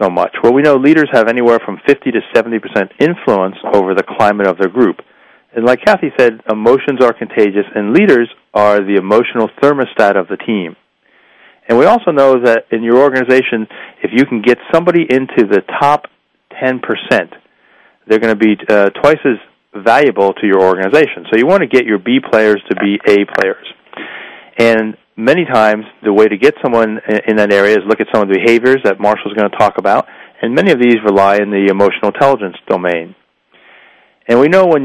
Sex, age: male, 40-59